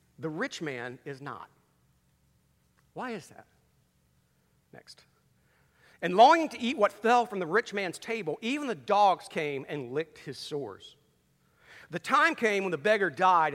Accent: American